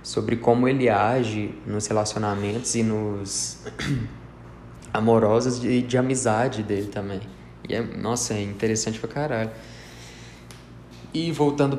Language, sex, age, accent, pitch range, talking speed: Portuguese, male, 20-39, Brazilian, 105-125 Hz, 120 wpm